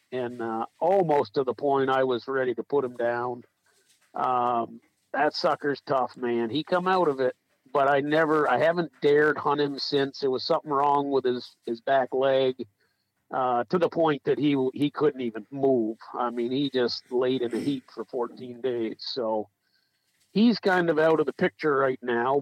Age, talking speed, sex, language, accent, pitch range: 50-69, 195 wpm, male, English, American, 125-150 Hz